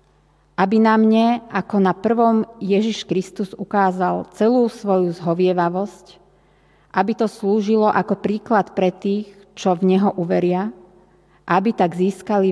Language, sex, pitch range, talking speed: Slovak, female, 180-215 Hz, 125 wpm